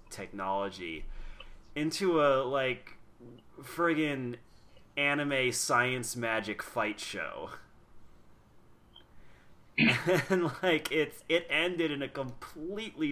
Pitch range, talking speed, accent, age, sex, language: 105-130 Hz, 80 wpm, American, 30-49, male, English